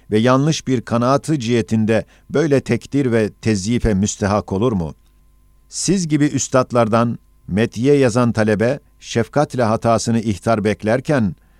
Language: Turkish